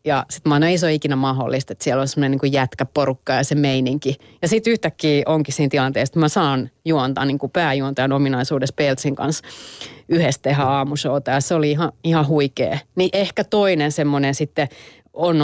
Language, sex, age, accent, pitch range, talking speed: Finnish, female, 30-49, native, 140-180 Hz, 175 wpm